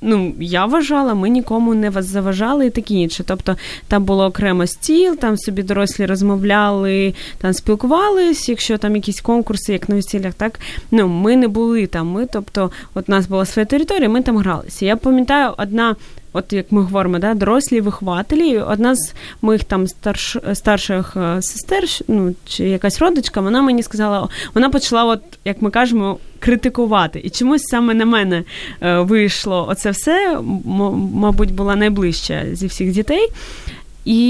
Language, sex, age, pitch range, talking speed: Ukrainian, female, 20-39, 195-260 Hz, 165 wpm